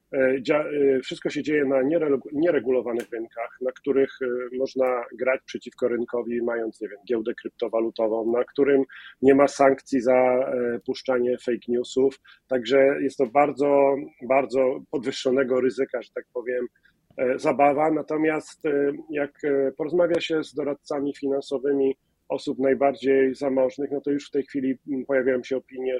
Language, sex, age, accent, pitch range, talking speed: Polish, male, 40-59, native, 125-145 Hz, 130 wpm